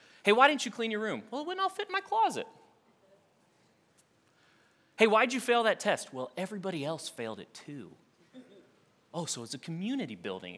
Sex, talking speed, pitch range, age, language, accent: male, 185 wpm, 145-220 Hz, 30-49, English, American